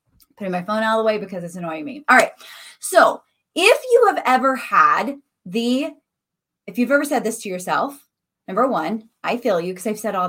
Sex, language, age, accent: female, English, 20-39, American